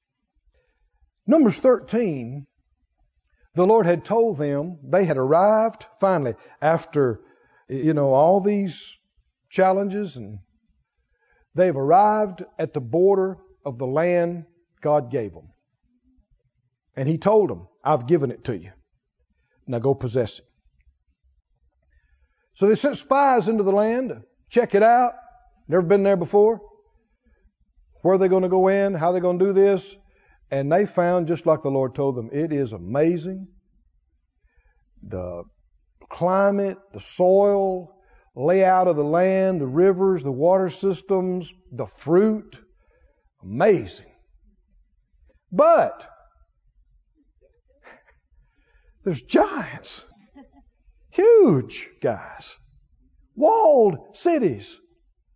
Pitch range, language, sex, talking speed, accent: 130-205 Hz, English, male, 115 wpm, American